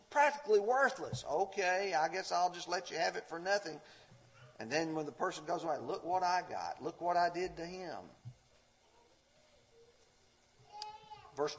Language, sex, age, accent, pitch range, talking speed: English, male, 50-69, American, 145-230 Hz, 160 wpm